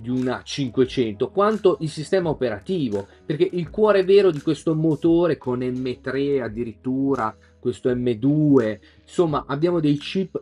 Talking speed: 130 wpm